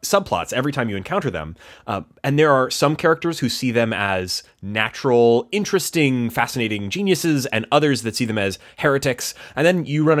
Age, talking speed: 20-39, 180 wpm